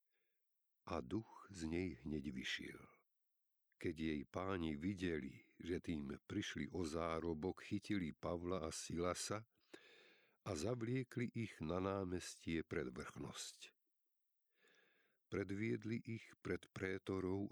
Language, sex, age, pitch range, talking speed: Slovak, male, 50-69, 90-120 Hz, 105 wpm